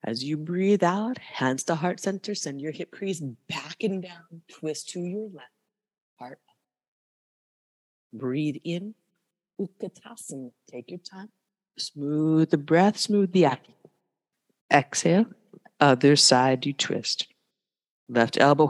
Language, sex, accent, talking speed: English, female, American, 130 wpm